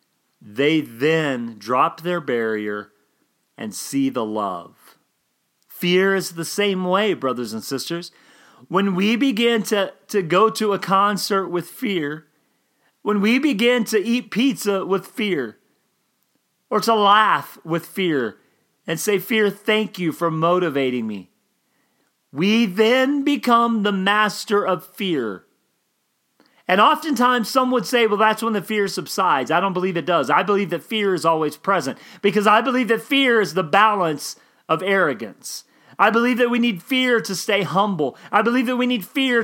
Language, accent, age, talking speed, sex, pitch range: English, American, 40-59, 160 wpm, male, 175-225 Hz